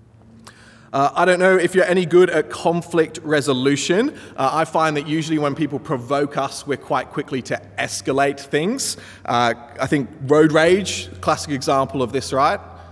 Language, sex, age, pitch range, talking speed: English, male, 30-49, 125-160 Hz, 165 wpm